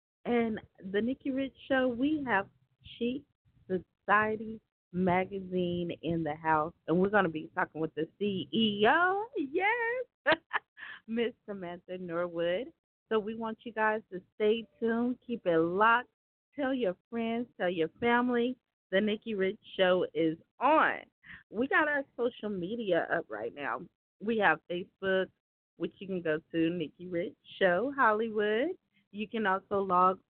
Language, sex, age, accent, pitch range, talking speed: English, female, 30-49, American, 185-275 Hz, 145 wpm